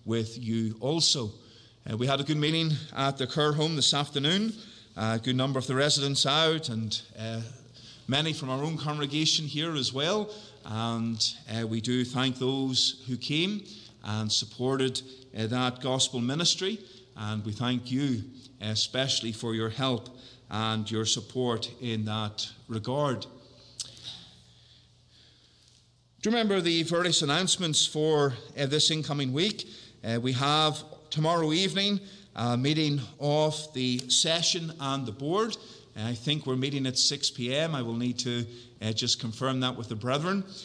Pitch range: 120-155 Hz